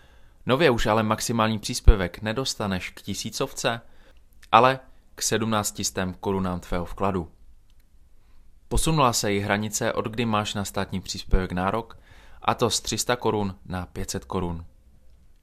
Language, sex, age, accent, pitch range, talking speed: Czech, male, 20-39, native, 90-110 Hz, 130 wpm